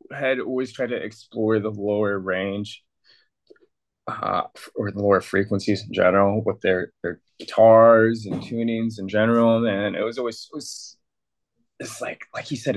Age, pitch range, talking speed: 20-39, 90-115 Hz, 155 wpm